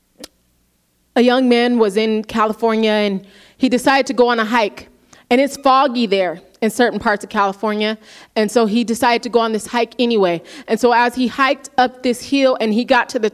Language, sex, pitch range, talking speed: English, female, 225-300 Hz, 205 wpm